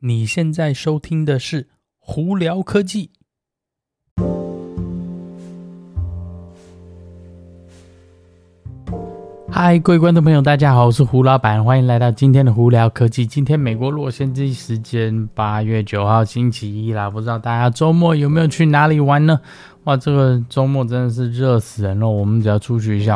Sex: male